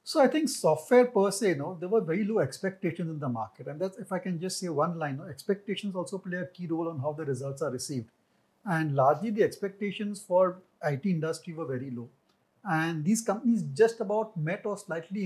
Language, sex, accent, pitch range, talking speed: English, male, Indian, 150-190 Hz, 225 wpm